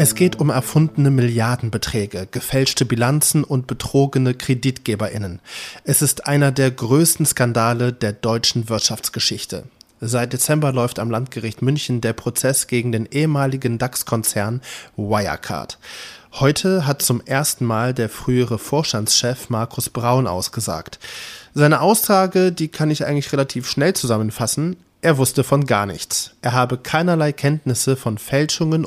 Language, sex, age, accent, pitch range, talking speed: German, male, 20-39, German, 115-140 Hz, 130 wpm